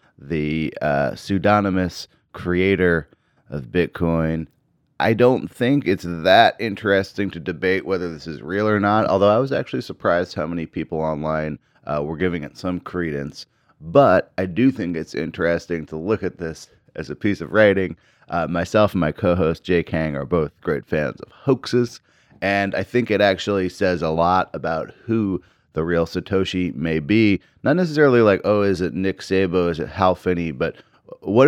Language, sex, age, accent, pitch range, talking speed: English, male, 30-49, American, 80-105 Hz, 175 wpm